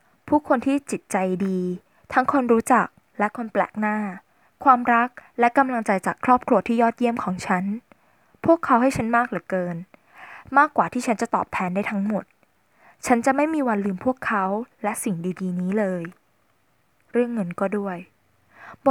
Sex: female